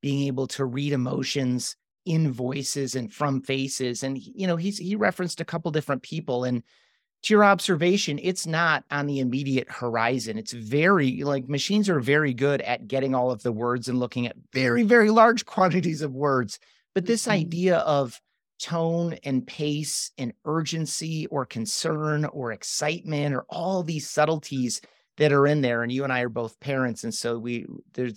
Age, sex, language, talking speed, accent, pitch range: 30-49, male, English, 180 wpm, American, 130-165 Hz